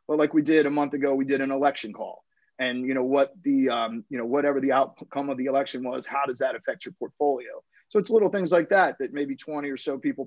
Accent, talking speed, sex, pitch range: American, 255 wpm, male, 140-170 Hz